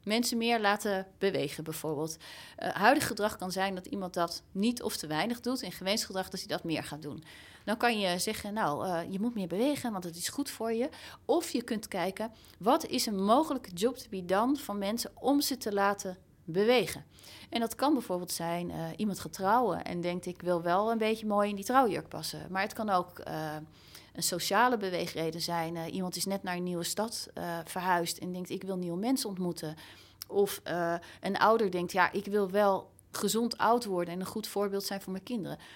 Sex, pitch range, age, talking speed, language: female, 175-220 Hz, 30-49, 215 wpm, Dutch